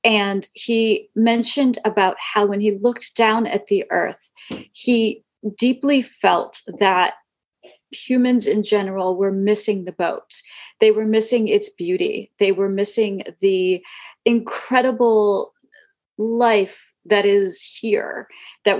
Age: 40-59